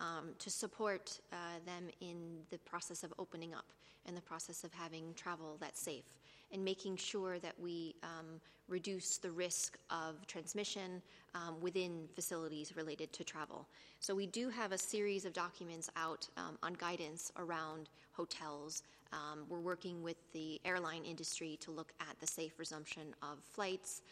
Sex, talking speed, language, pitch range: female, 160 wpm, English, 160-190 Hz